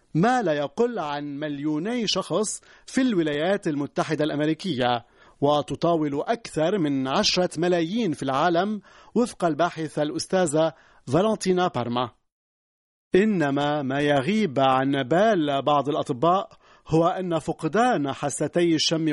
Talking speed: 105 wpm